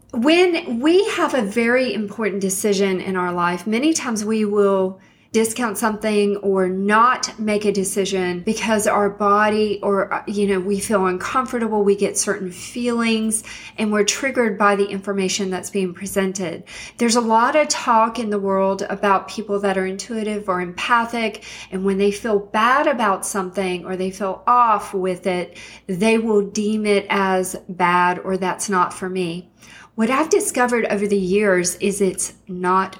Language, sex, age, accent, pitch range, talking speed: English, female, 40-59, American, 190-225 Hz, 165 wpm